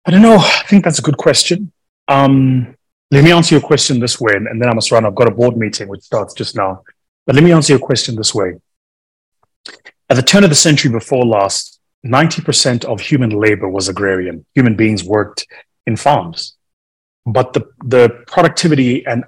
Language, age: English, 30-49